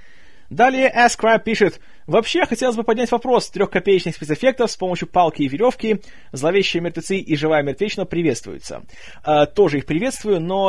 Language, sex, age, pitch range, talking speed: Russian, male, 20-39, 150-220 Hz, 150 wpm